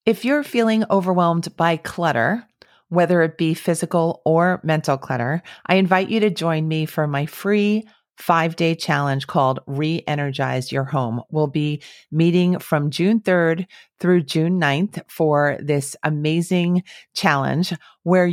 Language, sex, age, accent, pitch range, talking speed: English, female, 40-59, American, 145-180 Hz, 140 wpm